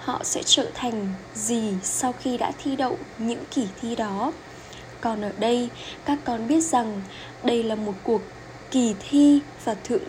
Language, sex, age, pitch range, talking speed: Vietnamese, female, 10-29, 225-270 Hz, 175 wpm